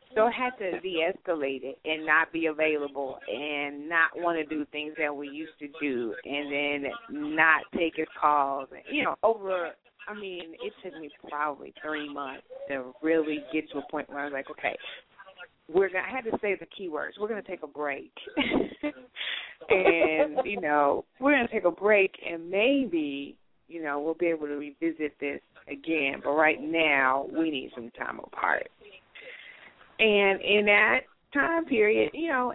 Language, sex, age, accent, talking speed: English, female, 30-49, American, 180 wpm